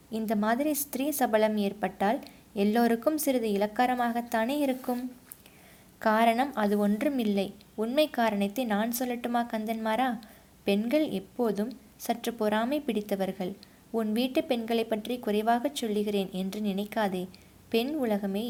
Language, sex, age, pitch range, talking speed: Tamil, female, 20-39, 210-265 Hz, 105 wpm